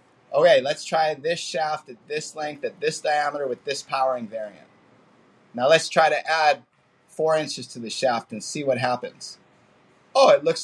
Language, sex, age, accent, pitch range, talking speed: English, male, 30-49, American, 140-185 Hz, 180 wpm